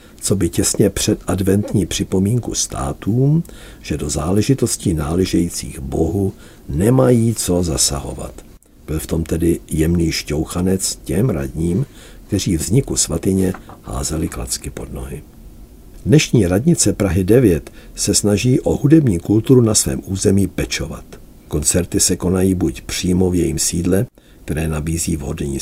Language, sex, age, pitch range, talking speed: Czech, male, 60-79, 80-105 Hz, 125 wpm